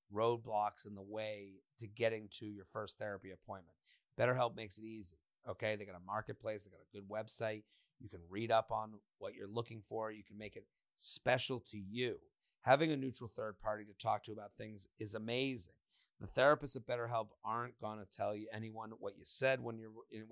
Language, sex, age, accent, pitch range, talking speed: English, male, 30-49, American, 110-125 Hz, 200 wpm